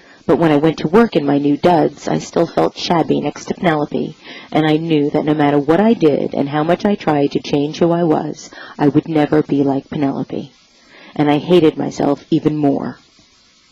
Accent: American